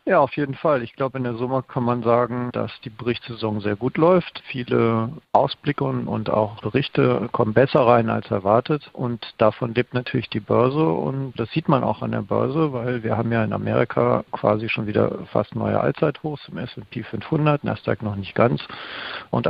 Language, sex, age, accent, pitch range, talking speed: German, male, 50-69, German, 115-135 Hz, 195 wpm